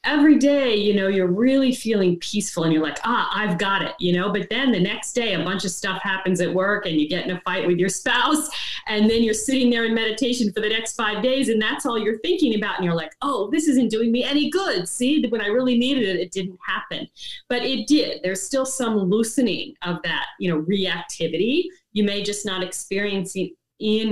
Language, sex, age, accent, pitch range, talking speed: English, female, 40-59, American, 185-265 Hz, 235 wpm